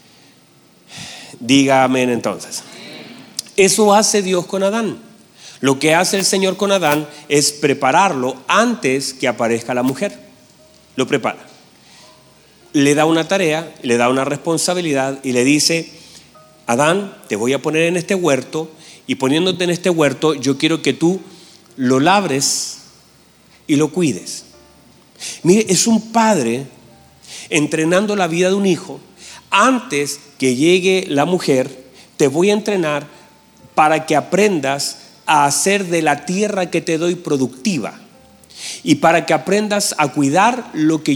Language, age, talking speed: Spanish, 40-59, 140 wpm